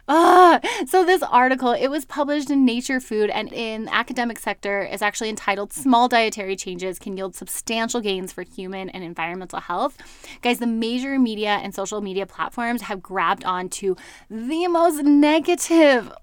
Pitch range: 215-300 Hz